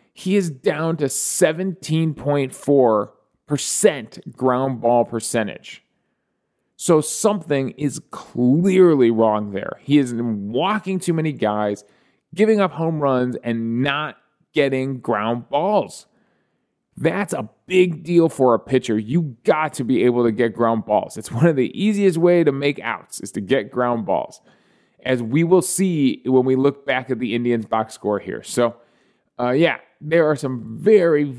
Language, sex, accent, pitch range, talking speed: English, male, American, 120-160 Hz, 155 wpm